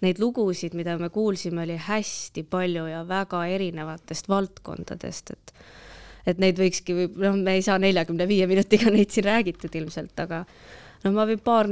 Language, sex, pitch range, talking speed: English, female, 170-205 Hz, 160 wpm